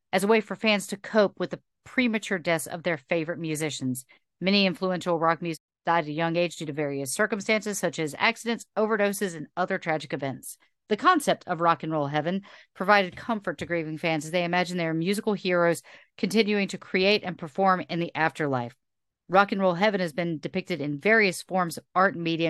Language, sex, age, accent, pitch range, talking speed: English, female, 40-59, American, 160-200 Hz, 205 wpm